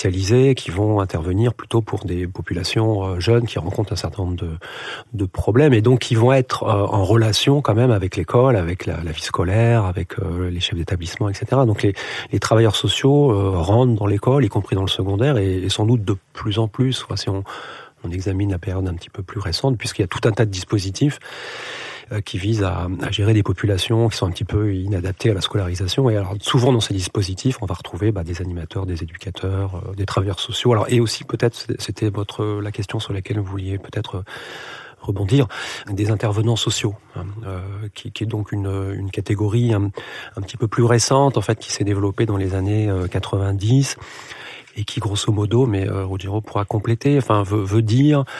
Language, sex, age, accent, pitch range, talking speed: French, male, 40-59, French, 95-115 Hz, 205 wpm